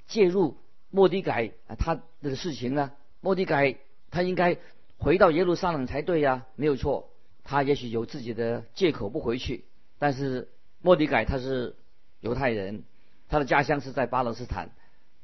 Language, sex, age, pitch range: Chinese, male, 50-69, 125-165 Hz